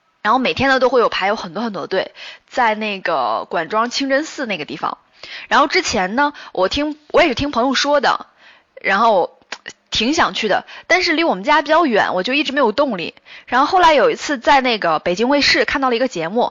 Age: 10-29